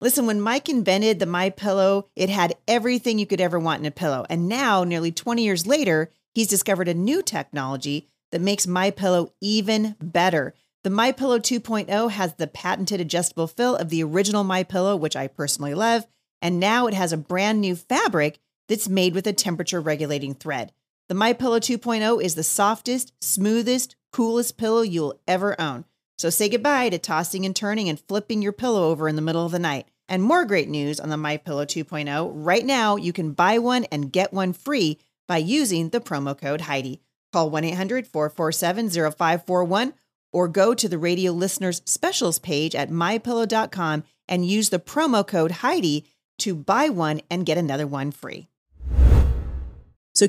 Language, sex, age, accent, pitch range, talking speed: English, female, 40-59, American, 160-220 Hz, 170 wpm